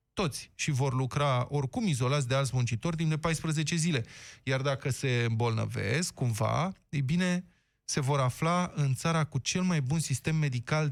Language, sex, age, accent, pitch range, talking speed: Romanian, male, 20-39, native, 125-170 Hz, 170 wpm